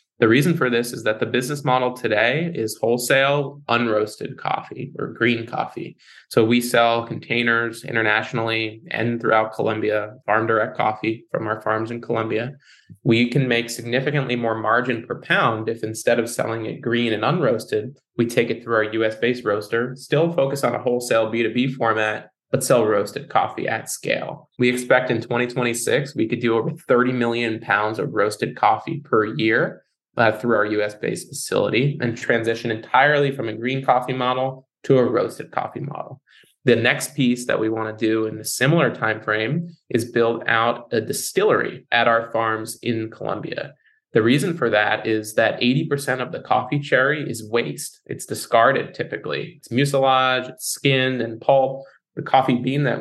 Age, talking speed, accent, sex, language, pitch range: 20-39, 170 wpm, American, male, English, 110-130 Hz